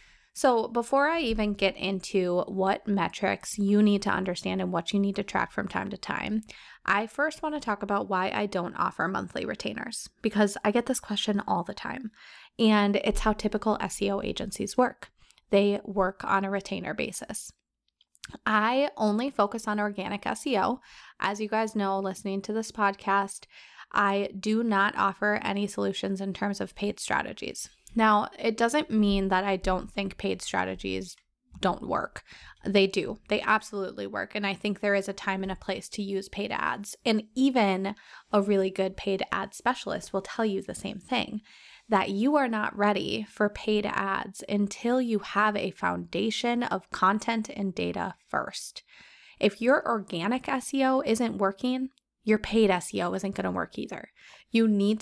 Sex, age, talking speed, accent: female, 20-39, 170 wpm, American